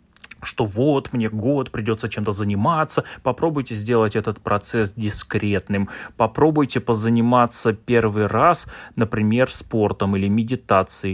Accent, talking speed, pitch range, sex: native, 110 wpm, 105-130 Hz, male